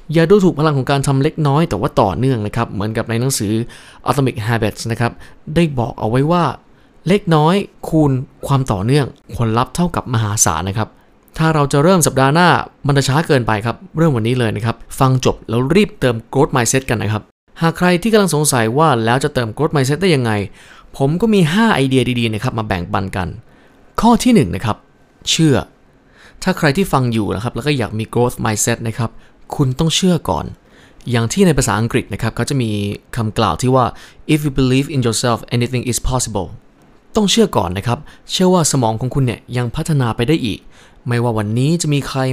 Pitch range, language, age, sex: 115-150 Hz, Thai, 20-39, male